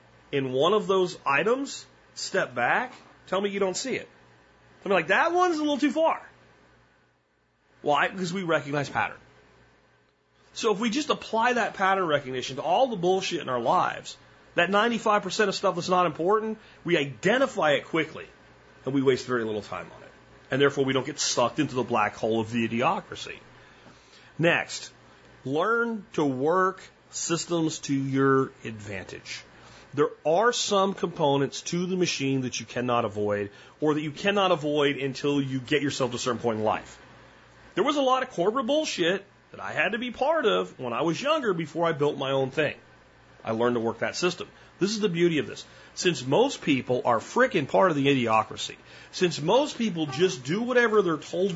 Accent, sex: American, male